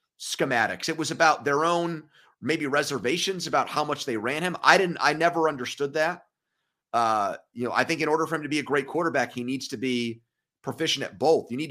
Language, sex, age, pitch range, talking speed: English, male, 30-49, 120-155 Hz, 220 wpm